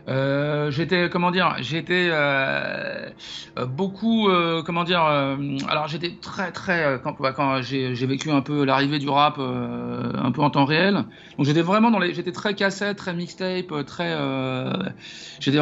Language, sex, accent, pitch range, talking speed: French, male, French, 145-185 Hz, 175 wpm